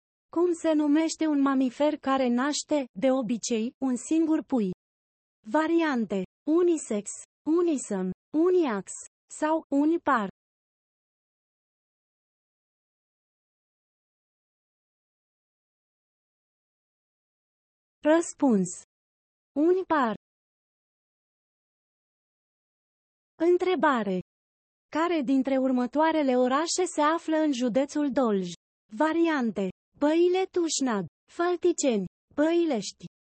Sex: female